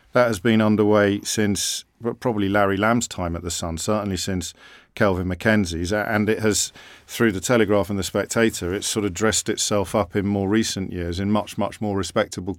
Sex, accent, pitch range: male, British, 95-110 Hz